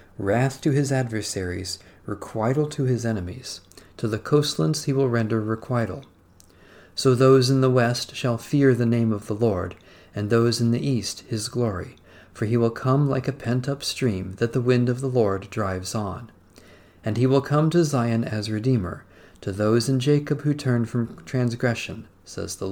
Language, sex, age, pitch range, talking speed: English, male, 40-59, 95-125 Hz, 180 wpm